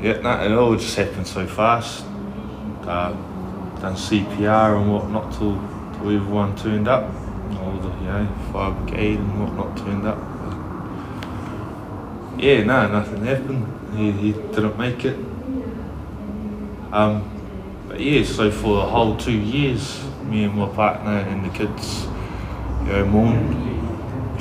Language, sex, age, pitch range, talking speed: English, male, 20-39, 95-110 Hz, 145 wpm